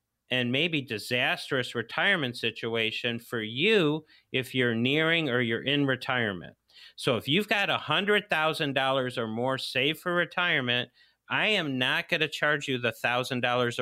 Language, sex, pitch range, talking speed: English, male, 125-155 Hz, 140 wpm